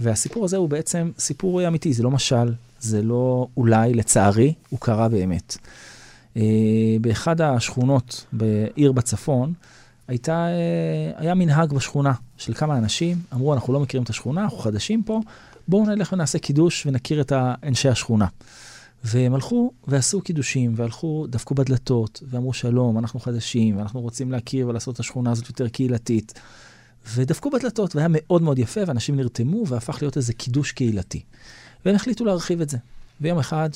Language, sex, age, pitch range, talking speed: Hebrew, male, 40-59, 115-160 Hz, 150 wpm